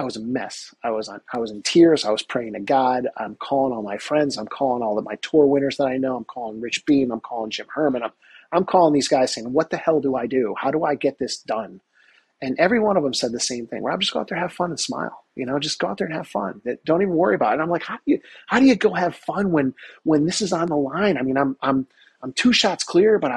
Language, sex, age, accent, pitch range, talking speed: English, male, 30-49, American, 120-155 Hz, 305 wpm